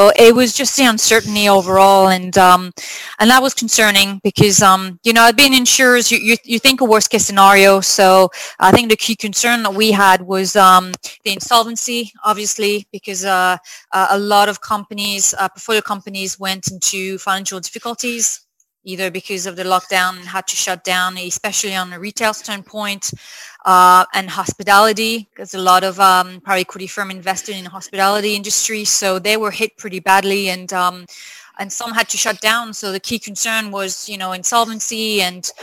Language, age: English, 30-49